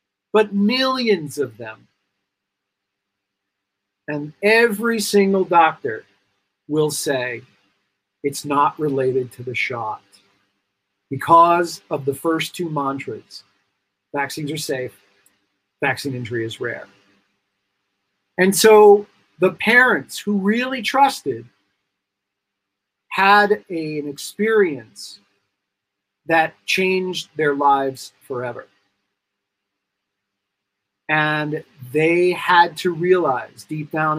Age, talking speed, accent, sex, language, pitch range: 40-59, 90 wpm, American, male, English, 100-155 Hz